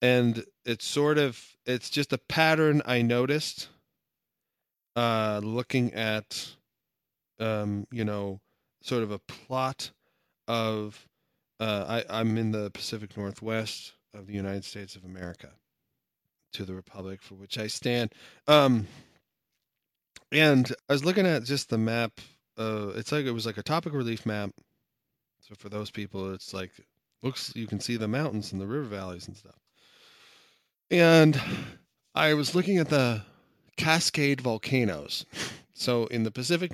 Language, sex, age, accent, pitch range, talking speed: English, male, 30-49, American, 105-135 Hz, 145 wpm